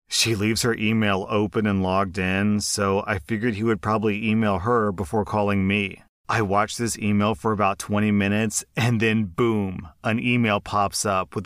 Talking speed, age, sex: 185 wpm, 30-49, male